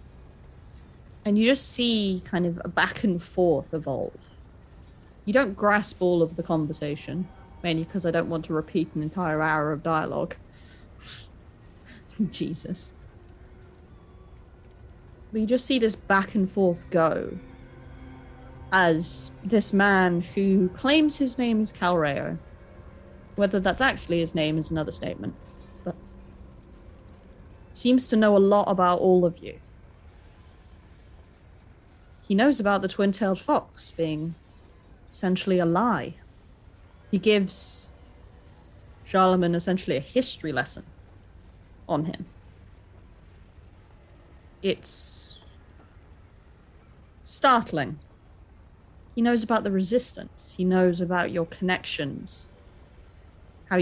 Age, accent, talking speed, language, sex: 30-49, British, 110 wpm, English, female